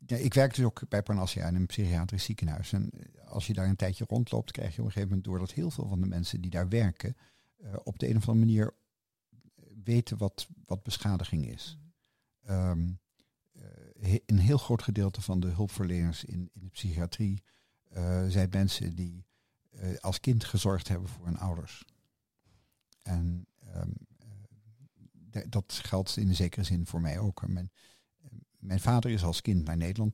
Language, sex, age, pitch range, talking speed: Dutch, male, 50-69, 90-110 Hz, 175 wpm